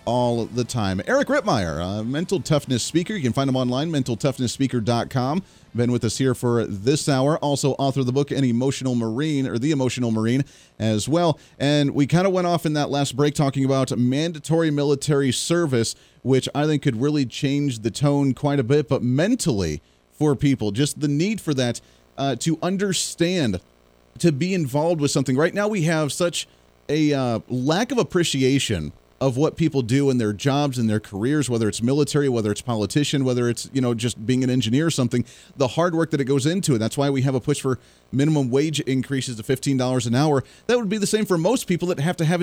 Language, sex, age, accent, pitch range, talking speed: English, male, 30-49, American, 125-155 Hz, 210 wpm